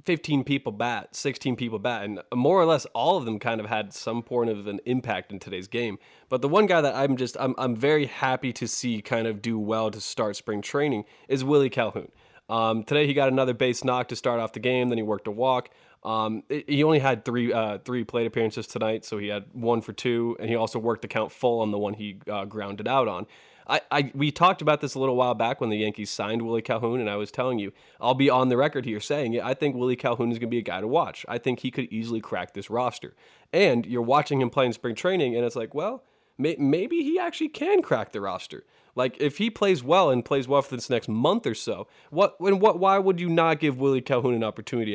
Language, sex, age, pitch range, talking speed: English, male, 20-39, 110-135 Hz, 255 wpm